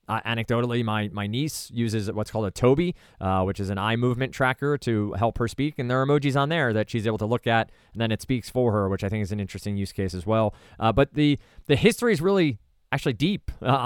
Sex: male